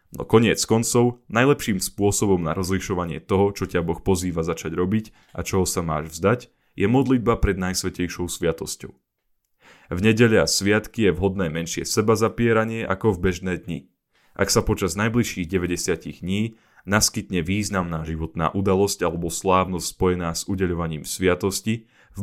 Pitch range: 90-110 Hz